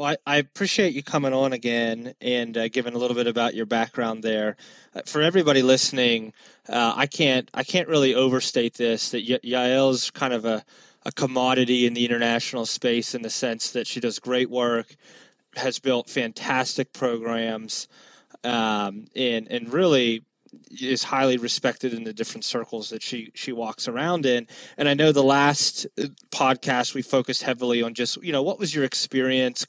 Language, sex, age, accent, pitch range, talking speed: English, male, 20-39, American, 120-140 Hz, 175 wpm